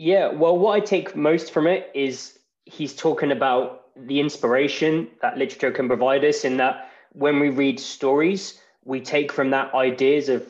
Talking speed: 175 wpm